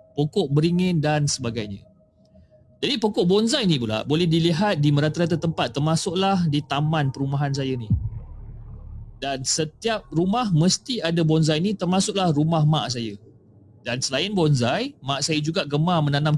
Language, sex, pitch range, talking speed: Malay, male, 125-180 Hz, 145 wpm